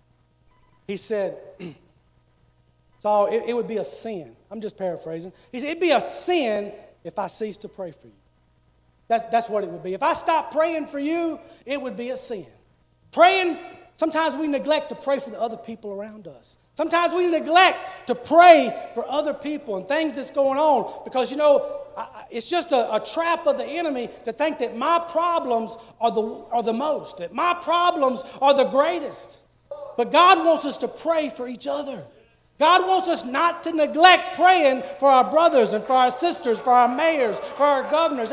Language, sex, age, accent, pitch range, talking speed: English, male, 40-59, American, 200-310 Hz, 195 wpm